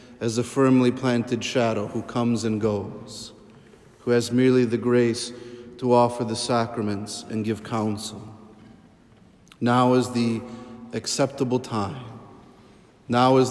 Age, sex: 40-59, male